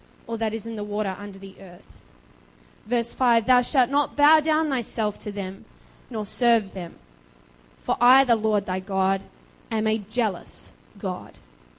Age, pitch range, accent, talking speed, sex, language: 20-39, 190-250 Hz, Australian, 165 wpm, female, English